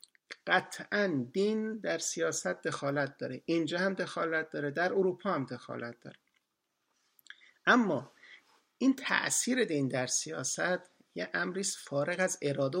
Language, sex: Persian, male